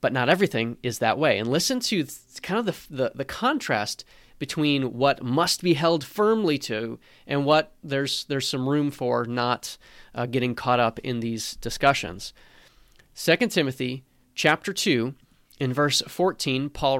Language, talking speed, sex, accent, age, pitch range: English, 160 wpm, male, American, 30-49, 125-160 Hz